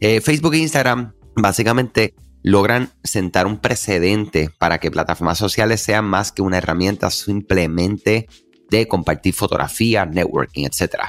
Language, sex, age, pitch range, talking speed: Spanish, male, 30-49, 90-115 Hz, 130 wpm